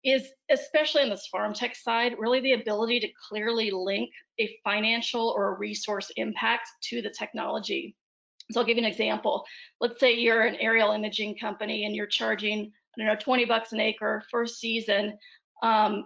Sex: female